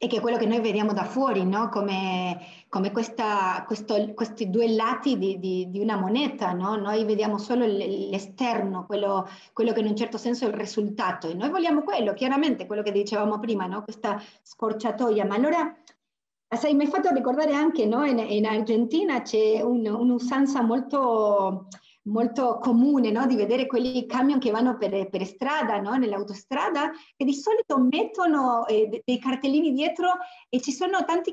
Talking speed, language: 175 wpm, Italian